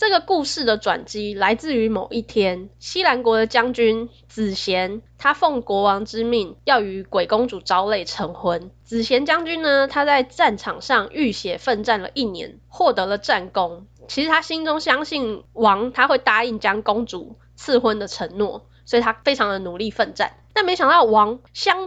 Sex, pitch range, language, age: female, 205-275 Hz, Chinese, 10-29